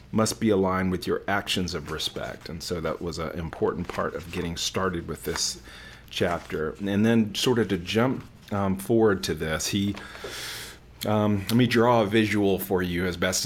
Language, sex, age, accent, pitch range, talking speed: English, male, 40-59, American, 90-105 Hz, 185 wpm